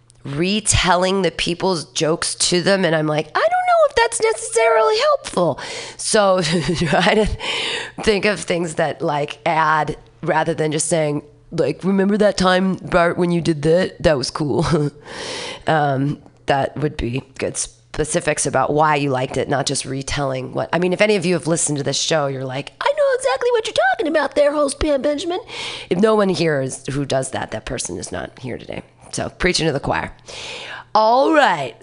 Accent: American